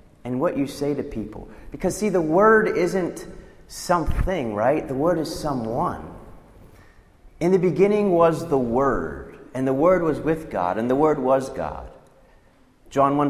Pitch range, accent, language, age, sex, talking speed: 110-160 Hz, American, English, 30-49, male, 160 wpm